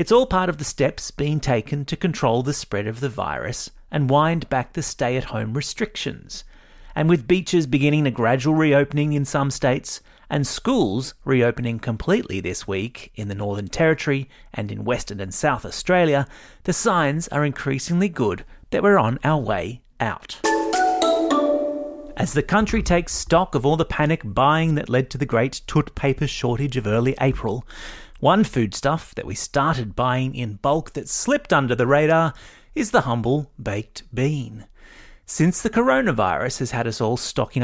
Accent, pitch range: Australian, 120-160 Hz